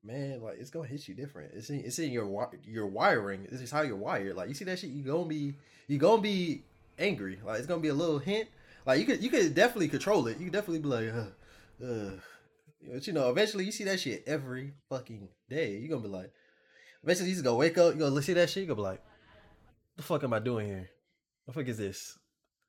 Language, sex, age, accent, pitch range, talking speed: English, male, 20-39, American, 110-165 Hz, 255 wpm